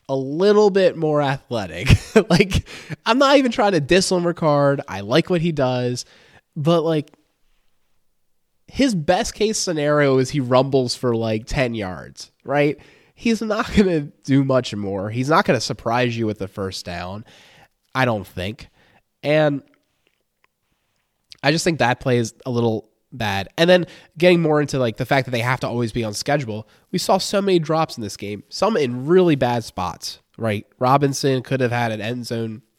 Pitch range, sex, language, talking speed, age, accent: 105-150 Hz, male, English, 180 wpm, 20-39, American